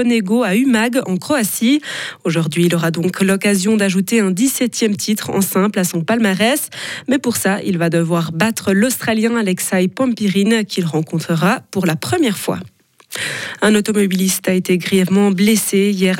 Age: 20-39